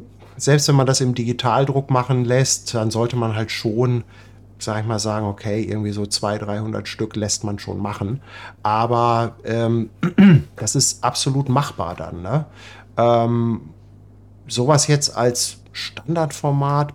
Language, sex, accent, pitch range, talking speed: German, male, German, 105-125 Hz, 140 wpm